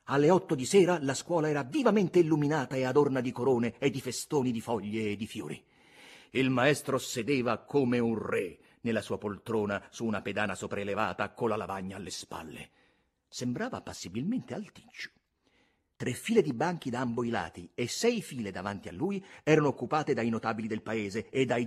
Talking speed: 175 wpm